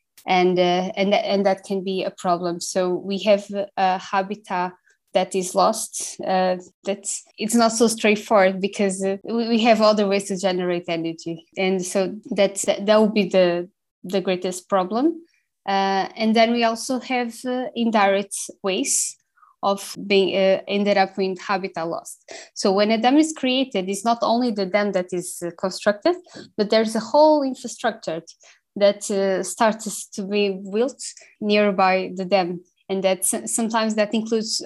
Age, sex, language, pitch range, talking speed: 20-39, female, English, 190-225 Hz, 165 wpm